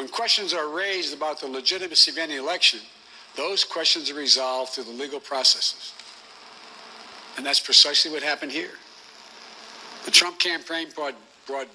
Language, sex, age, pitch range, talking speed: English, male, 60-79, 140-200 Hz, 150 wpm